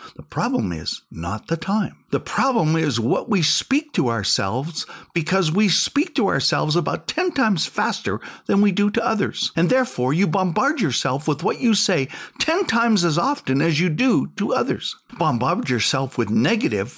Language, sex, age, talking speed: English, male, 60-79, 175 wpm